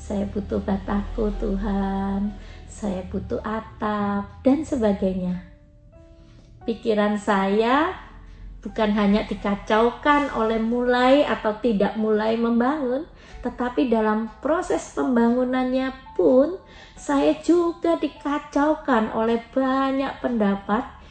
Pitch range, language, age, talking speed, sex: 200-255 Hz, Indonesian, 30-49, 90 wpm, female